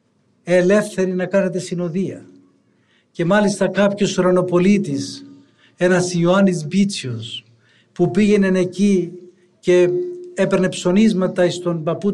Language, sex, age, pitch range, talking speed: Greek, male, 60-79, 170-195 Hz, 95 wpm